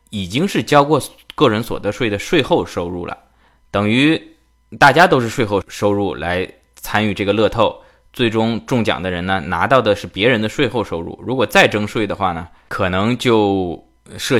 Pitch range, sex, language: 95-115 Hz, male, Chinese